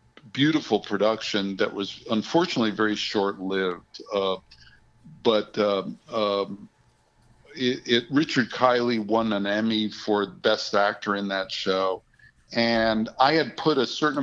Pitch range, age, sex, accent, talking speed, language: 100-125 Hz, 50-69, male, American, 125 wpm, English